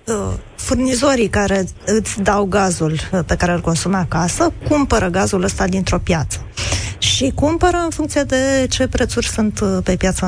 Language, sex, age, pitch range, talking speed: Romanian, female, 20-39, 175-235 Hz, 145 wpm